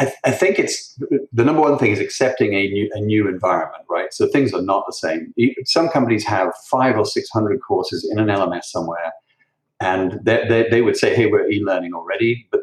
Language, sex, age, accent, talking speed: English, male, 40-59, British, 220 wpm